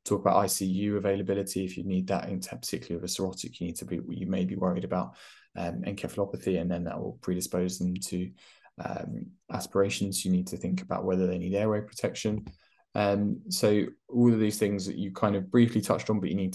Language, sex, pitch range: English, male, 90-100 Hz